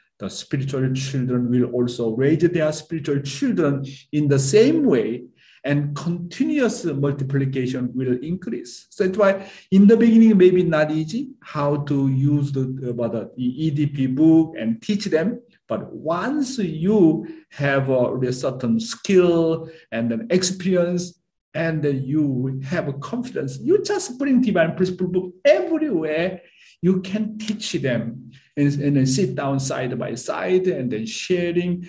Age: 50-69